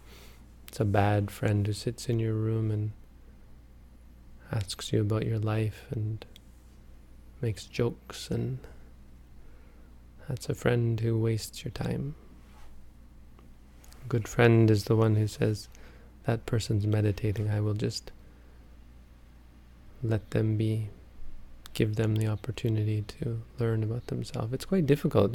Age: 20-39